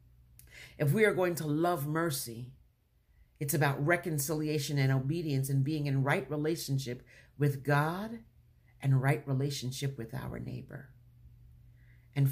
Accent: American